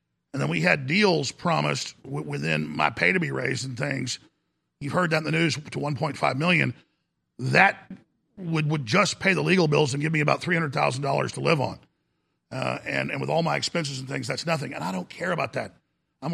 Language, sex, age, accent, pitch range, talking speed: English, male, 50-69, American, 135-170 Hz, 215 wpm